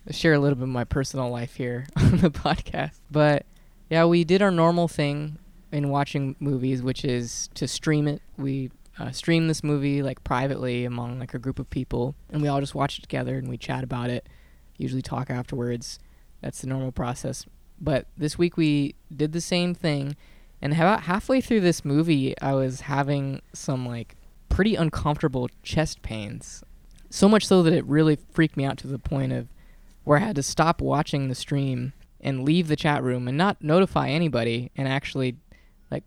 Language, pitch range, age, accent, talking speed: English, 125-155 Hz, 20-39, American, 190 wpm